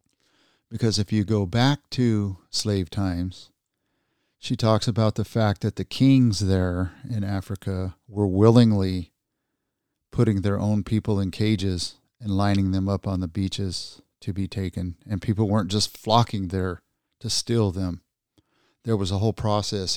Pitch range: 95-110 Hz